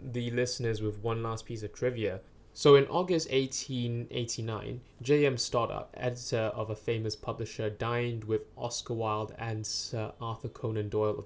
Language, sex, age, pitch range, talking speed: English, male, 10-29, 105-125 Hz, 155 wpm